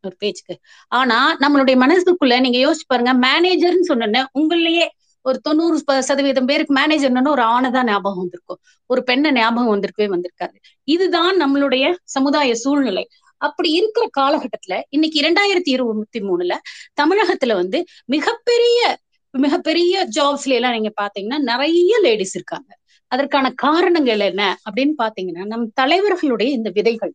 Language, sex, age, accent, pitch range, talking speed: Tamil, female, 30-49, native, 235-325 Hz, 105 wpm